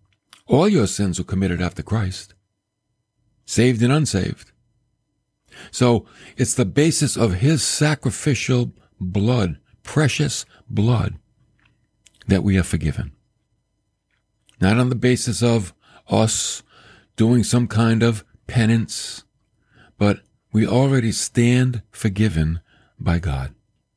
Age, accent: 50-69, American